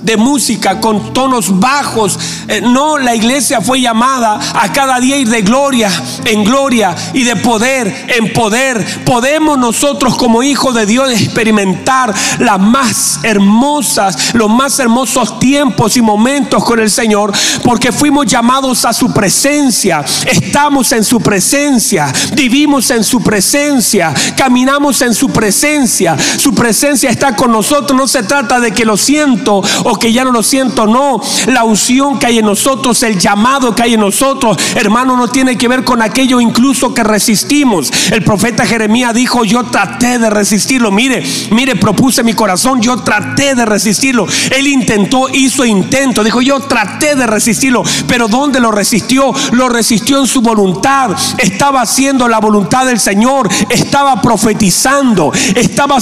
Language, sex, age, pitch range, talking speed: Spanish, male, 40-59, 220-265 Hz, 155 wpm